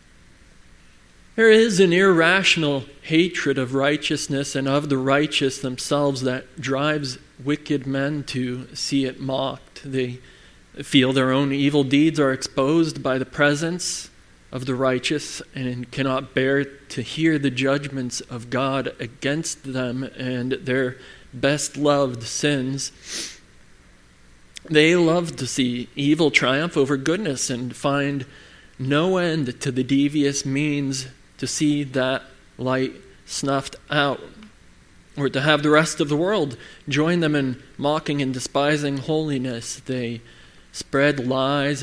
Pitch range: 130-150 Hz